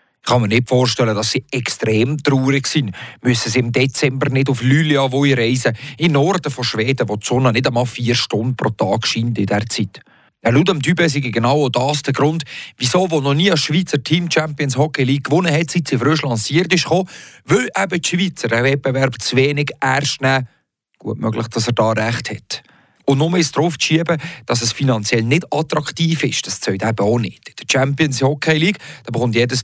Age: 40-59